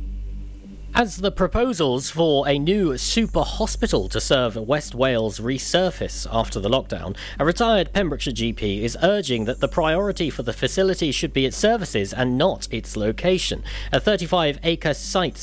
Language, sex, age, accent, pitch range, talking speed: English, male, 40-59, British, 120-175 Hz, 150 wpm